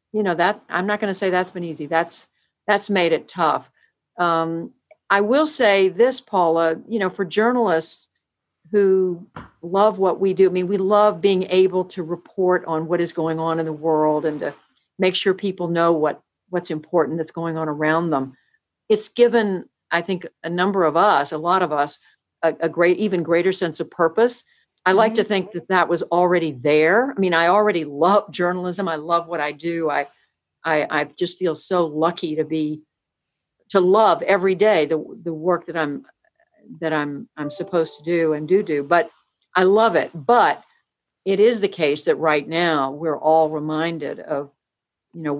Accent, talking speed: American, 190 wpm